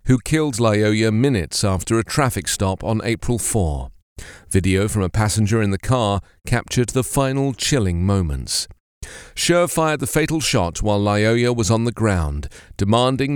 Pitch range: 95-130 Hz